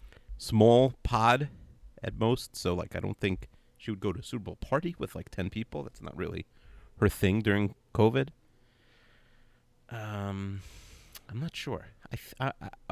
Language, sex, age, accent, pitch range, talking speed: English, male, 30-49, American, 95-125 Hz, 165 wpm